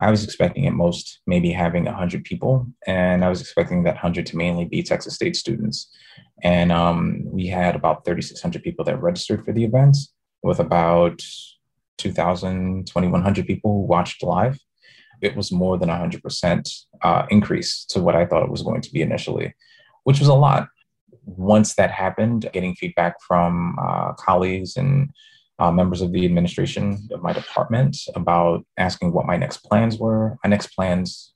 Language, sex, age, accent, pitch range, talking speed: English, male, 20-39, American, 90-120 Hz, 170 wpm